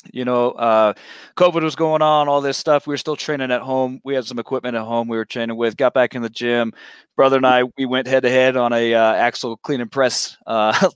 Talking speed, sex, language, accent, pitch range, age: 245 wpm, male, English, American, 115-135 Hz, 20-39